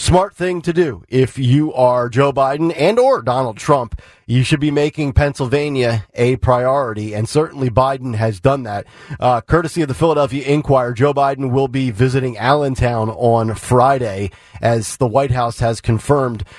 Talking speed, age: 165 wpm, 40-59